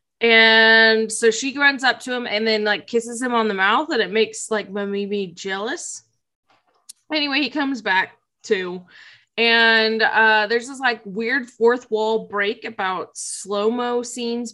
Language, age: English, 20-39